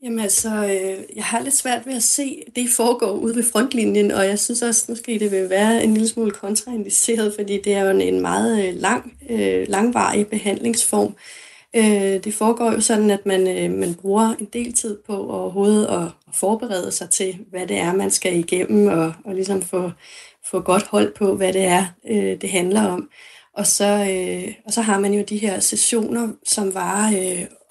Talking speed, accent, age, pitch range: 180 wpm, native, 30-49, 195-225 Hz